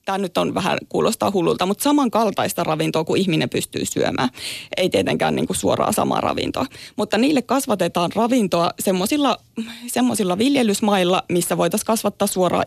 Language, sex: Finnish, female